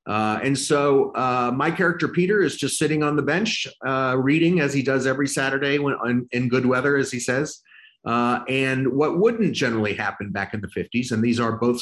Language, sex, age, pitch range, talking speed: English, male, 40-59, 110-140 Hz, 215 wpm